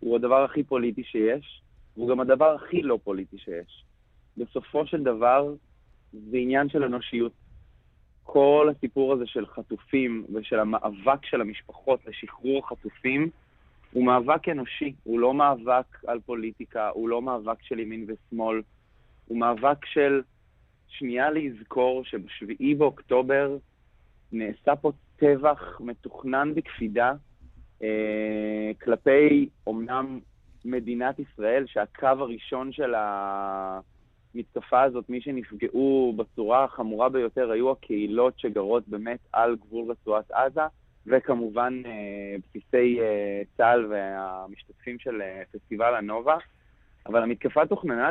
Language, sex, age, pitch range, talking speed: Hebrew, male, 30-49, 105-135 Hz, 110 wpm